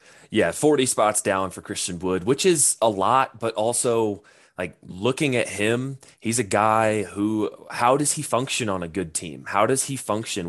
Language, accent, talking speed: English, American, 190 wpm